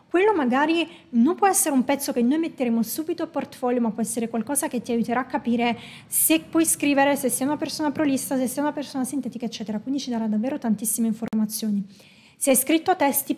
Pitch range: 235-295 Hz